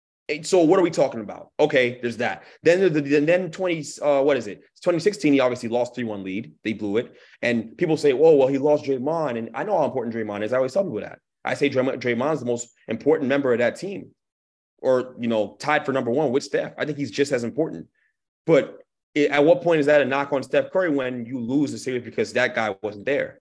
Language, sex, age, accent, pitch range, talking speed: English, male, 30-49, American, 125-150 Hz, 230 wpm